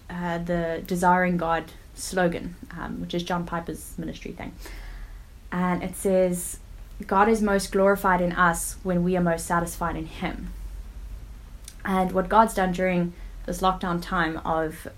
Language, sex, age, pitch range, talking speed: English, female, 10-29, 170-200 Hz, 150 wpm